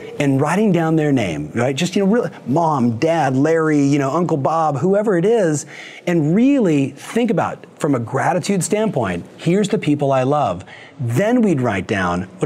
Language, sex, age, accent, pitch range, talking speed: English, male, 30-49, American, 140-205 Hz, 185 wpm